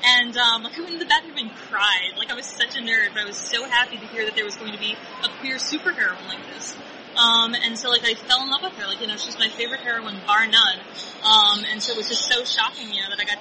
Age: 20-39